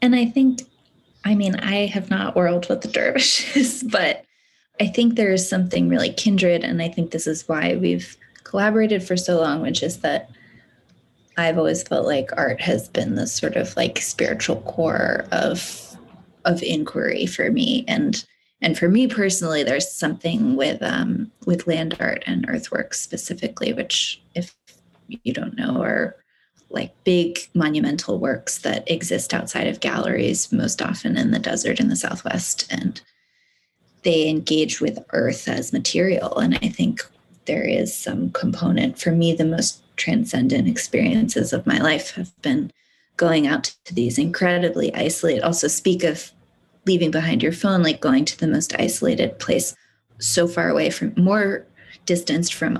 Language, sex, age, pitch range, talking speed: English, female, 20-39, 165-235 Hz, 160 wpm